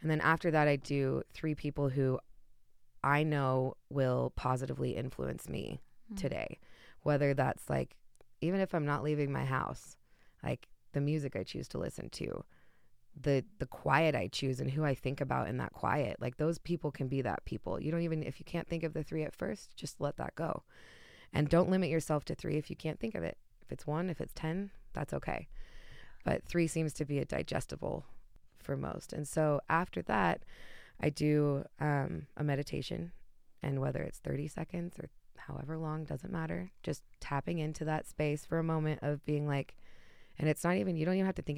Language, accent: English, American